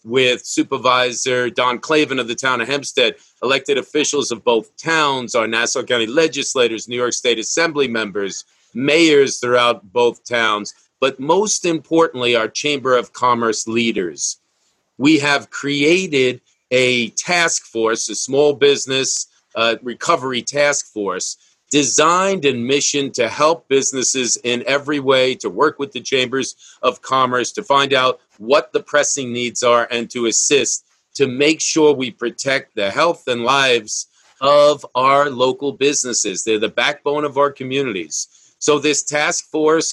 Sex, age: male, 40-59